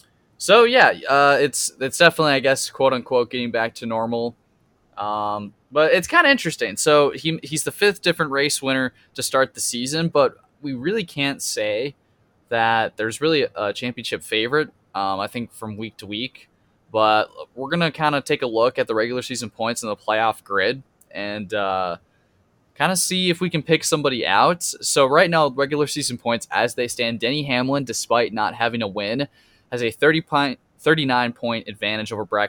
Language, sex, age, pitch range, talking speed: English, male, 10-29, 110-150 Hz, 190 wpm